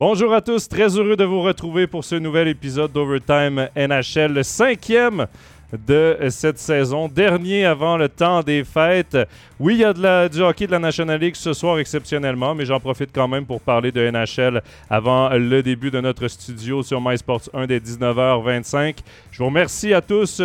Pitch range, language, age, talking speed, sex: 125-165 Hz, French, 30-49, 190 wpm, male